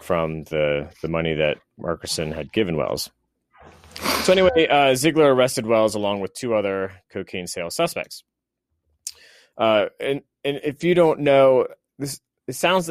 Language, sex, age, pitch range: English, male, 30-49, 85-120 Hz